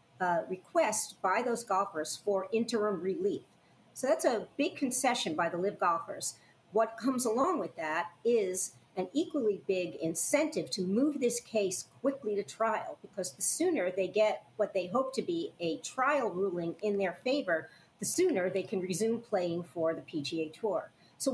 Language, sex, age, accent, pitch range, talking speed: English, female, 50-69, American, 180-235 Hz, 170 wpm